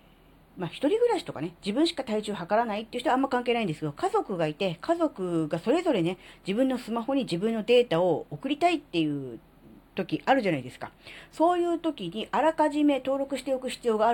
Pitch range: 160-260 Hz